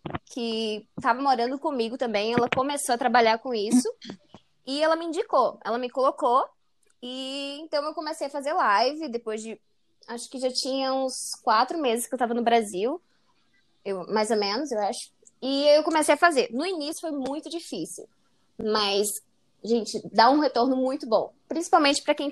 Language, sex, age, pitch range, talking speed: Portuguese, female, 10-29, 225-285 Hz, 175 wpm